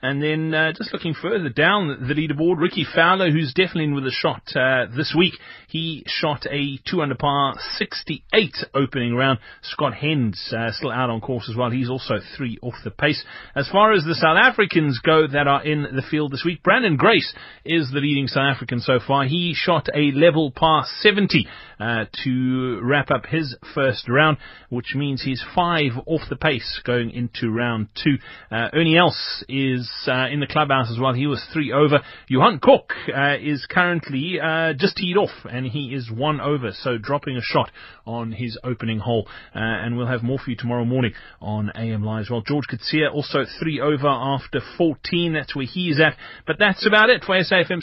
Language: English